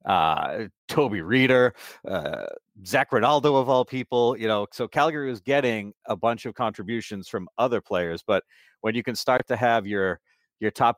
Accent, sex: American, male